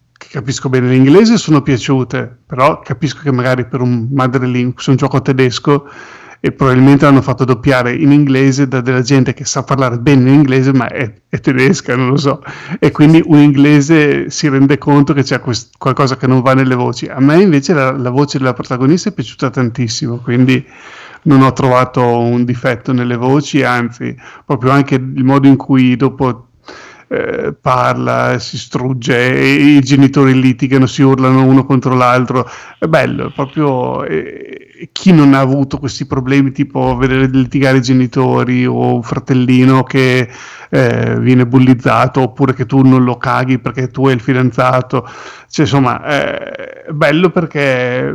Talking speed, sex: 170 wpm, male